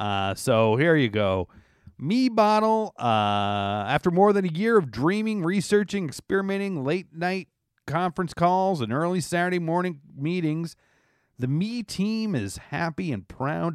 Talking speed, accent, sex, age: 140 wpm, American, male, 40-59